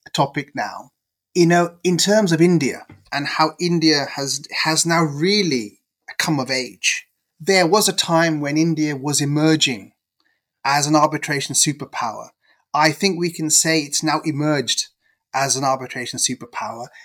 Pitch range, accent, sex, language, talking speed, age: 140-165 Hz, British, male, English, 150 wpm, 30-49